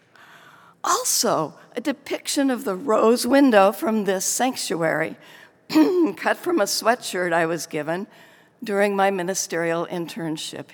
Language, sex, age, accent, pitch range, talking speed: English, female, 60-79, American, 165-220 Hz, 115 wpm